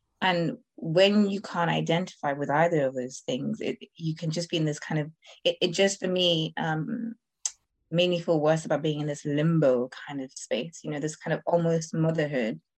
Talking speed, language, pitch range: 205 wpm, English, 155-185 Hz